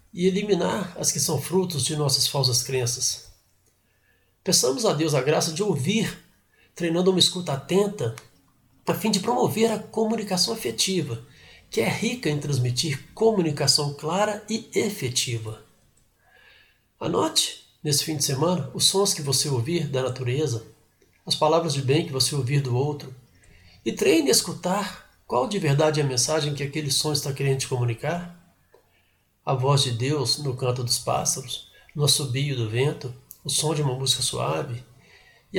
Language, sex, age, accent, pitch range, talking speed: Portuguese, male, 60-79, Brazilian, 125-160 Hz, 160 wpm